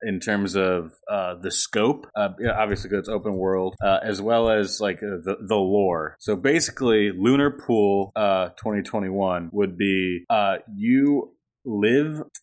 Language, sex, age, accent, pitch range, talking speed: English, male, 20-39, American, 95-120 Hz, 160 wpm